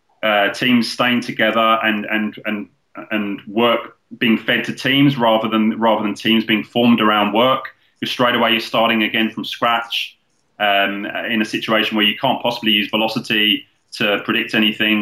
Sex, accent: male, British